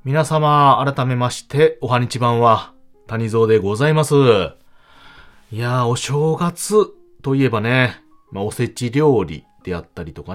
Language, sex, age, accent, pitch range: Japanese, male, 30-49, native, 100-165 Hz